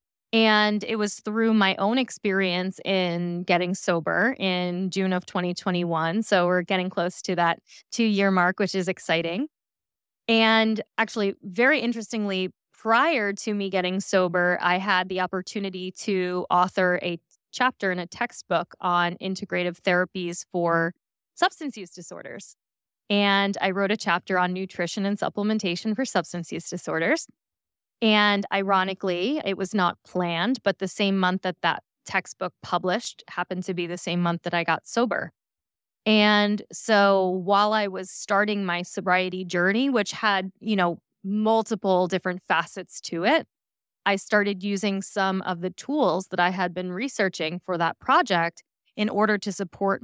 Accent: American